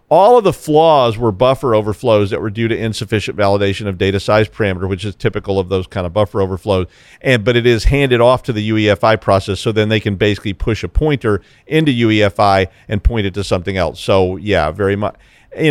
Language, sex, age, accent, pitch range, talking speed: English, male, 40-59, American, 105-130 Hz, 220 wpm